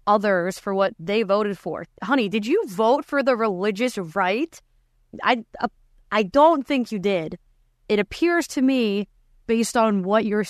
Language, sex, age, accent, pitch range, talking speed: English, female, 20-39, American, 185-245 Hz, 165 wpm